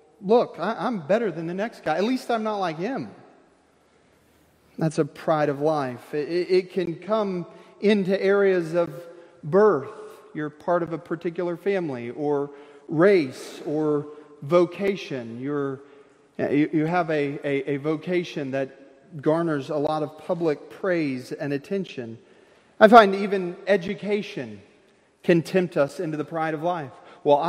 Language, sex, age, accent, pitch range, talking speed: English, male, 40-59, American, 150-195 Hz, 140 wpm